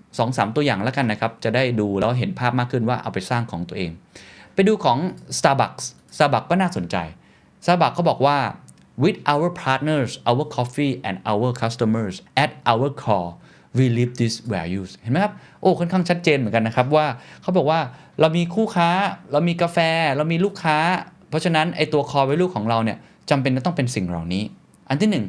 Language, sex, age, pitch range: Thai, male, 20-39, 110-165 Hz